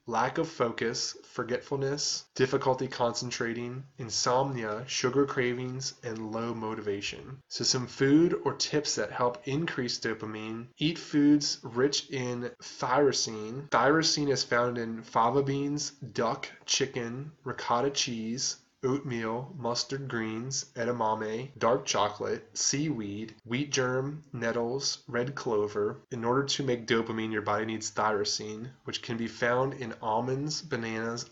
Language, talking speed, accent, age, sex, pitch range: English, 125 wpm, American, 10-29, male, 115-135 Hz